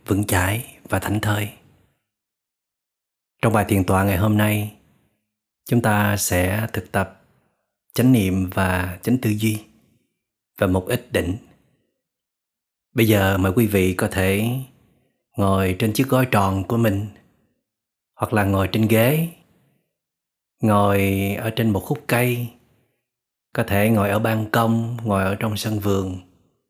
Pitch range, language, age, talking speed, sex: 100-115 Hz, Vietnamese, 30-49, 140 wpm, male